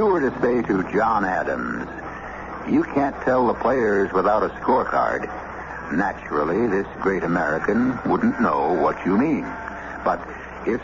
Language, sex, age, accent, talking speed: English, male, 60-79, American, 140 wpm